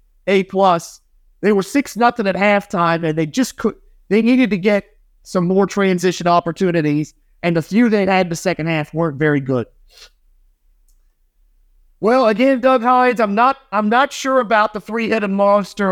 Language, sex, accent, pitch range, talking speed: English, male, American, 170-215 Hz, 165 wpm